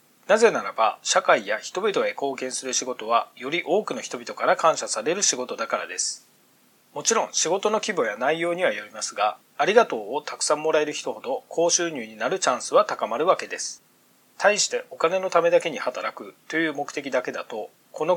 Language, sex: Japanese, male